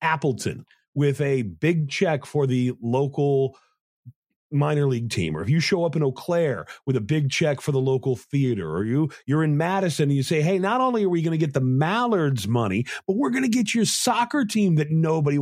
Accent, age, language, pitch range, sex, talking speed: American, 40-59, English, 130-190 Hz, male, 220 wpm